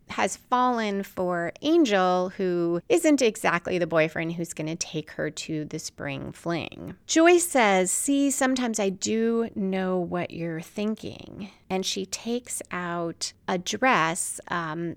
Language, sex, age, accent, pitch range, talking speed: English, female, 30-49, American, 165-220 Hz, 140 wpm